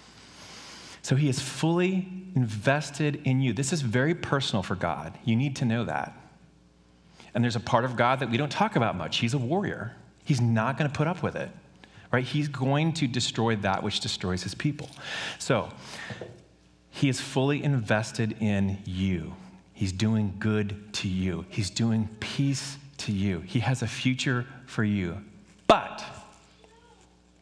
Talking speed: 160 wpm